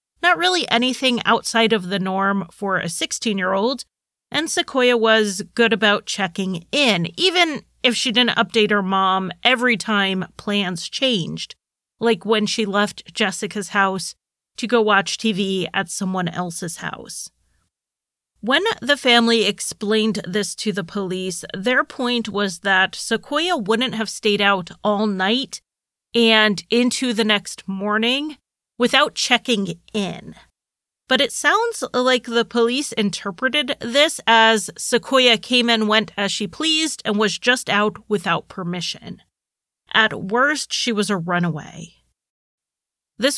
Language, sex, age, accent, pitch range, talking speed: English, female, 30-49, American, 195-245 Hz, 135 wpm